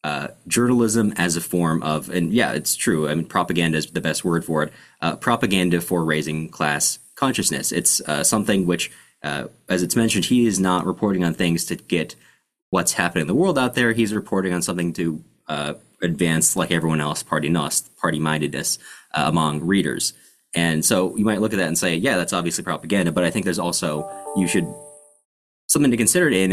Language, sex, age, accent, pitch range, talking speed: English, male, 20-39, American, 80-95 Hz, 200 wpm